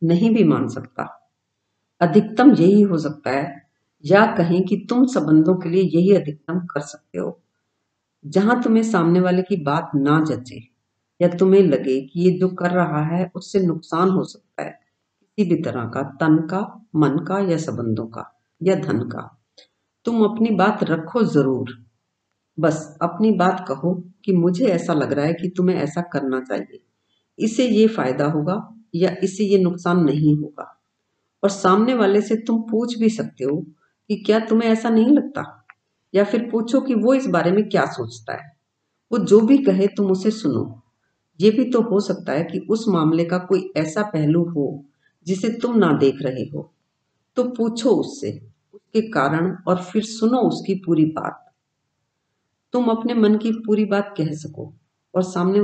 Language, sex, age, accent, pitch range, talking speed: Hindi, female, 50-69, native, 150-210 Hz, 175 wpm